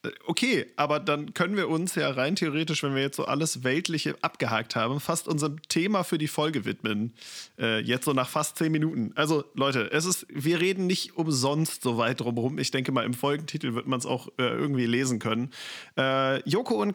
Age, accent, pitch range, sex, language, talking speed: 40-59, German, 130-165 Hz, male, German, 210 wpm